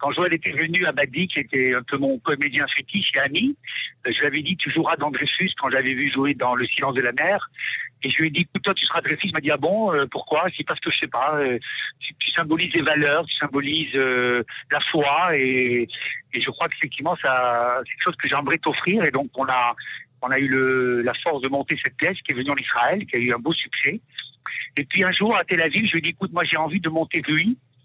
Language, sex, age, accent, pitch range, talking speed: Hebrew, male, 60-79, French, 135-165 Hz, 280 wpm